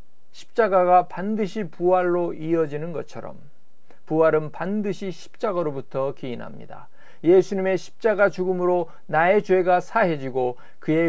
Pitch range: 145-190 Hz